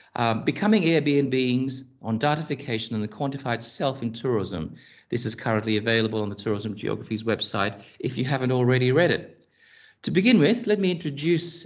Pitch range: 110-140 Hz